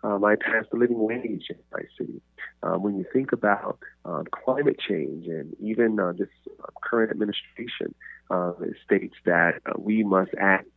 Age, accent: 30-49, American